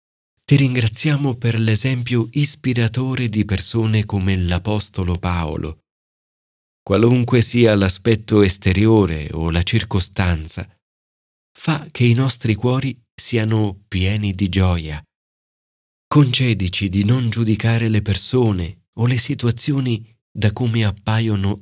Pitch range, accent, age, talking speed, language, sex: 95-125 Hz, native, 40-59, 105 wpm, Italian, male